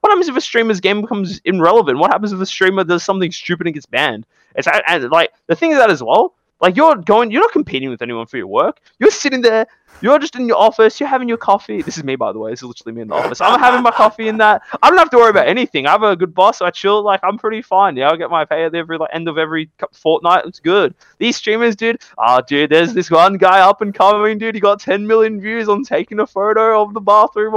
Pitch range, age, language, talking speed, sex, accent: 165-225 Hz, 20-39, English, 285 wpm, male, Australian